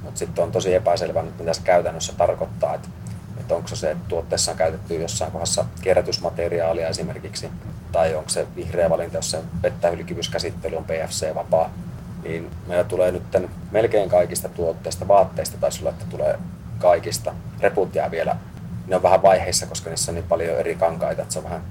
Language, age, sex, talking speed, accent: Finnish, 30-49, male, 170 wpm, native